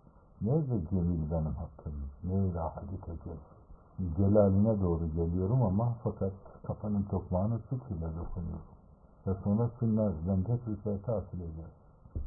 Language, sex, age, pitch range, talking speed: Turkish, male, 60-79, 85-105 Hz, 110 wpm